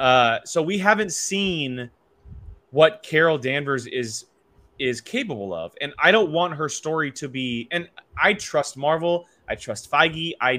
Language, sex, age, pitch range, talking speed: English, male, 20-39, 125-170 Hz, 160 wpm